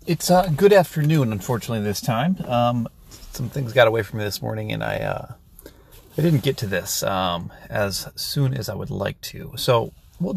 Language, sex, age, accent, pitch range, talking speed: English, male, 30-49, American, 105-145 Hz, 195 wpm